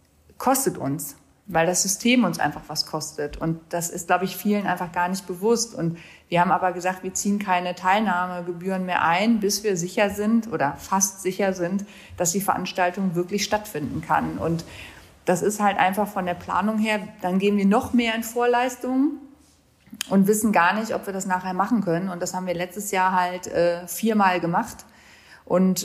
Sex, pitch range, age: female, 180-215 Hz, 30-49